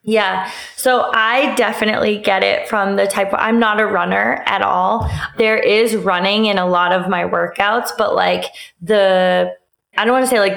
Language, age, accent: English, 20-39, American